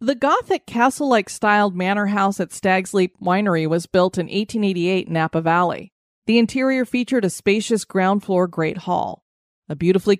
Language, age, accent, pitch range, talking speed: English, 30-49, American, 175-215 Hz, 160 wpm